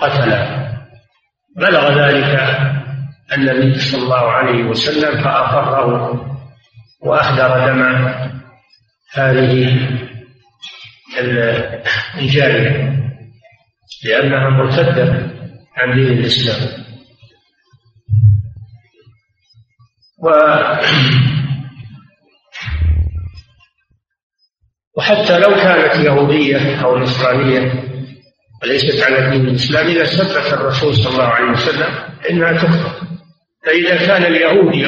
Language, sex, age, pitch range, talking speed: Arabic, male, 50-69, 125-155 Hz, 70 wpm